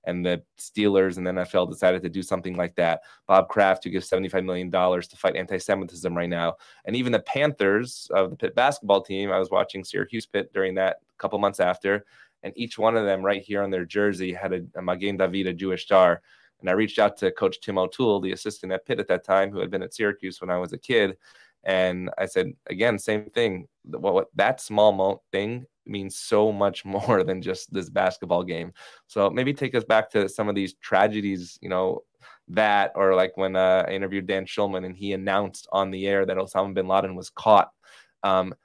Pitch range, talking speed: 95-105 Hz, 215 wpm